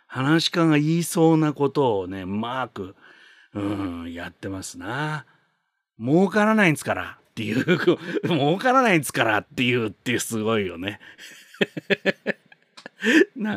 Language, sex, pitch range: Japanese, male, 115-170 Hz